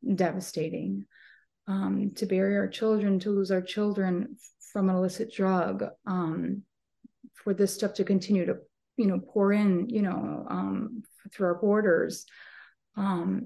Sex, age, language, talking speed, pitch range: female, 30-49, English, 145 wpm, 175-205 Hz